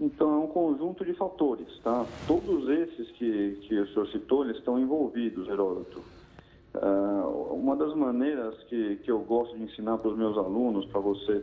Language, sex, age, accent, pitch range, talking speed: Portuguese, male, 40-59, Brazilian, 110-135 Hz, 175 wpm